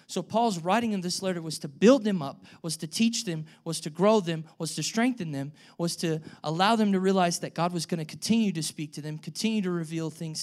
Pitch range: 160-200 Hz